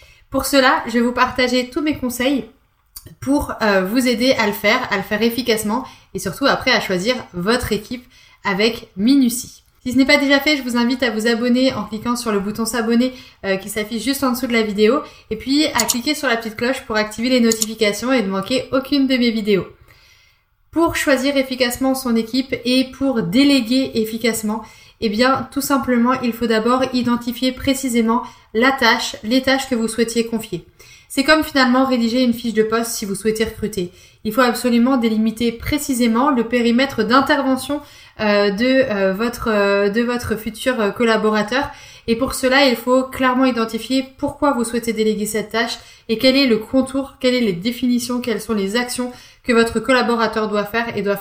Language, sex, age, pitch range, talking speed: French, female, 20-39, 220-260 Hz, 190 wpm